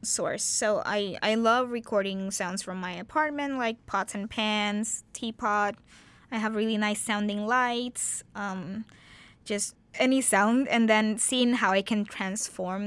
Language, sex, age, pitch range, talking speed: English, female, 20-39, 195-225 Hz, 150 wpm